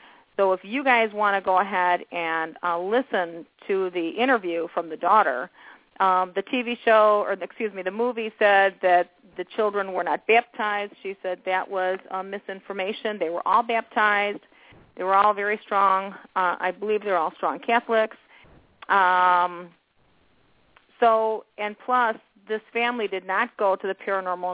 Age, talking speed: 40-59, 165 wpm